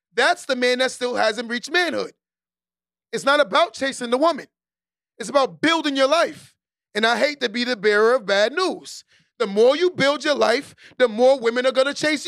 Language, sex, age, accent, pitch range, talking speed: English, male, 30-49, American, 230-310 Hz, 205 wpm